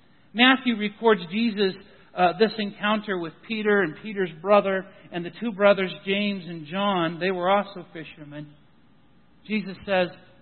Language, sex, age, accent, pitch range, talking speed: English, male, 60-79, American, 170-235 Hz, 140 wpm